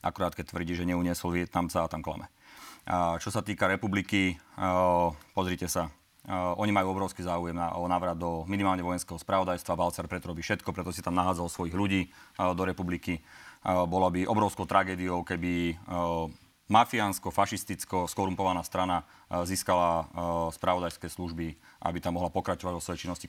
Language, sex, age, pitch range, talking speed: Slovak, male, 30-49, 85-95 Hz, 140 wpm